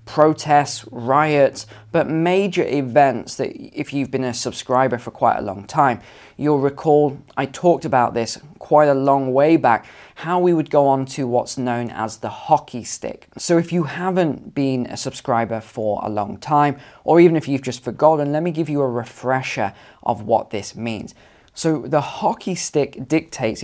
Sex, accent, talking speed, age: male, British, 180 wpm, 20-39